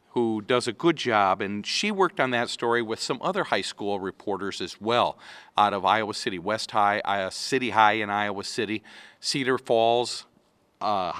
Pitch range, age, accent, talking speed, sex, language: 105-140 Hz, 50-69, American, 180 wpm, male, English